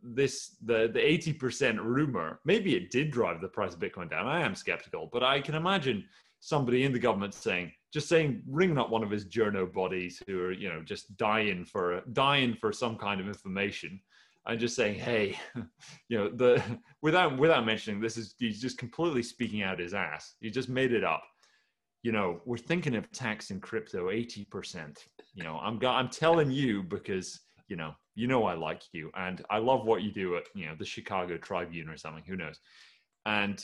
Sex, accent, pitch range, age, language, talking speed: male, British, 100-130 Hz, 30-49, English, 205 wpm